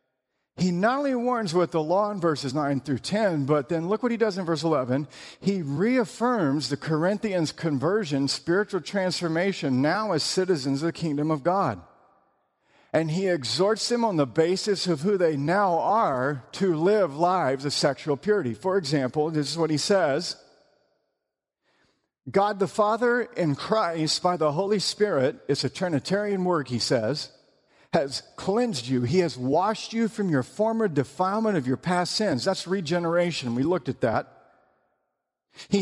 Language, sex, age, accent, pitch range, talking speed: English, male, 50-69, American, 140-200 Hz, 165 wpm